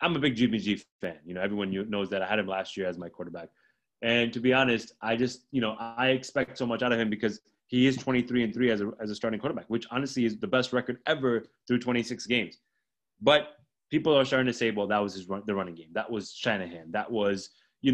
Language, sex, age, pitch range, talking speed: English, male, 30-49, 105-135 Hz, 255 wpm